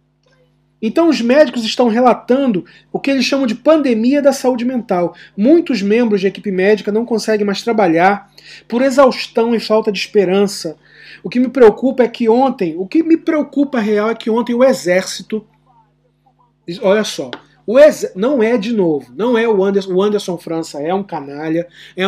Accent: Brazilian